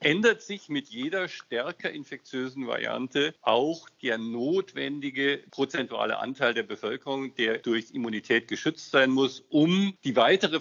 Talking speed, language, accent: 130 wpm, German, German